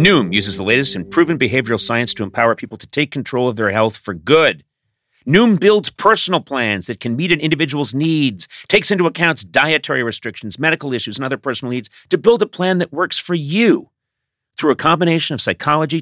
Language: English